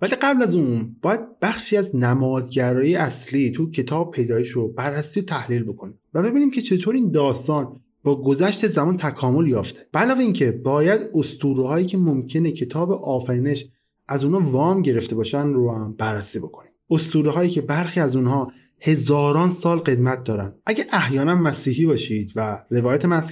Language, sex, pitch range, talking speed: Persian, male, 125-165 Hz, 160 wpm